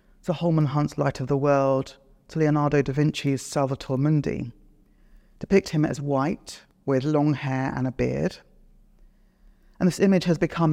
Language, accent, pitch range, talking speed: English, British, 140-185 Hz, 150 wpm